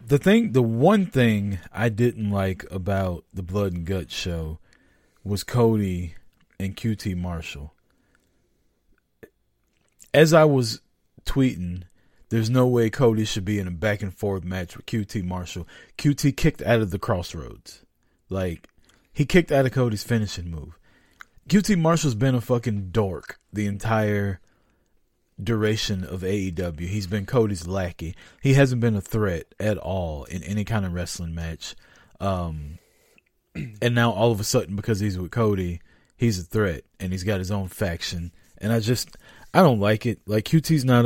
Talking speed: 160 wpm